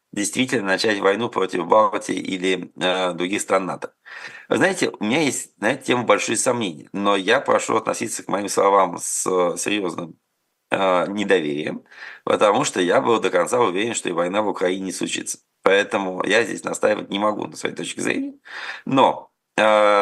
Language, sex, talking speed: Russian, male, 165 wpm